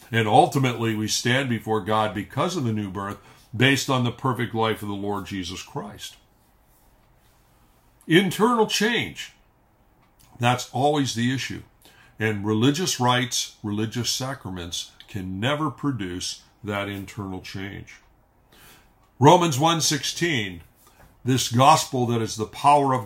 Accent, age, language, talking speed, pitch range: American, 60-79, English, 120 wpm, 110-140 Hz